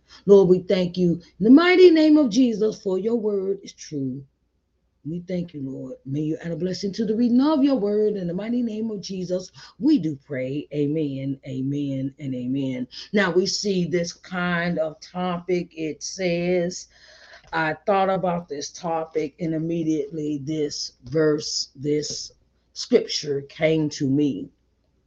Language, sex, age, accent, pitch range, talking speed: English, female, 40-59, American, 130-190 Hz, 160 wpm